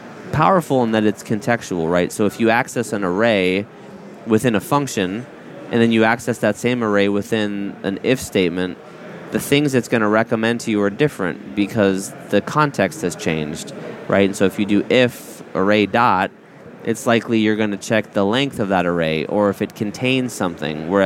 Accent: American